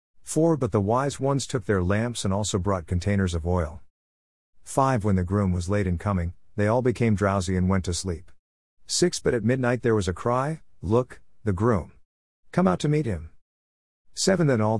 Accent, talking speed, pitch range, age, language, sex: American, 195 wpm, 85-115 Hz, 50-69, English, male